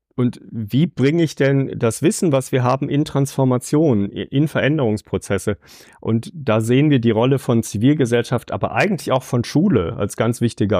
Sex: male